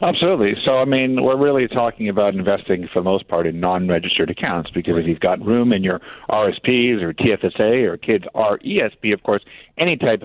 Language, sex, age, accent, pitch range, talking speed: English, male, 50-69, American, 100-120 Hz, 195 wpm